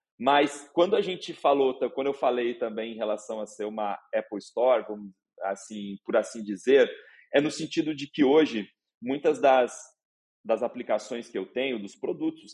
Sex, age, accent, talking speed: male, 30-49, Brazilian, 170 wpm